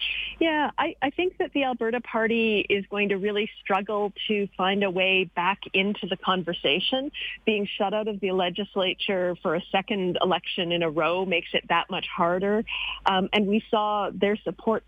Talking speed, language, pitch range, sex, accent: 180 wpm, English, 185-225 Hz, female, American